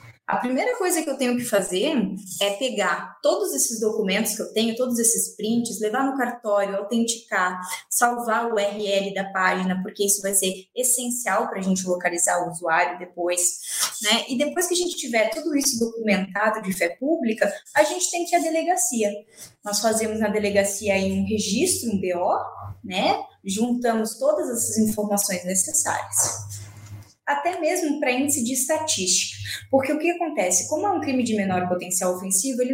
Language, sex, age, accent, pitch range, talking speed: Portuguese, female, 20-39, Brazilian, 195-260 Hz, 170 wpm